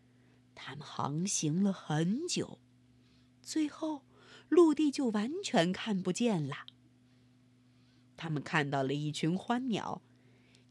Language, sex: Chinese, female